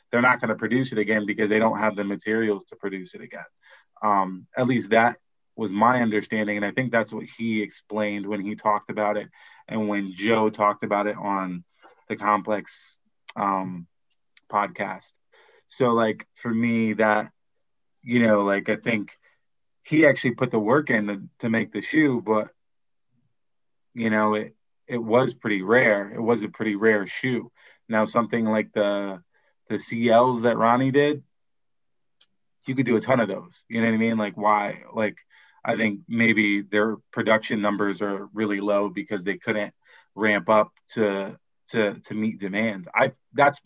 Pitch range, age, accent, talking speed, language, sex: 105-120 Hz, 20-39, American, 175 wpm, English, male